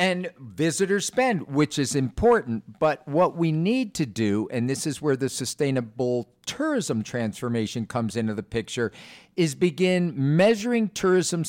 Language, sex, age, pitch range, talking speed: English, male, 50-69, 125-175 Hz, 145 wpm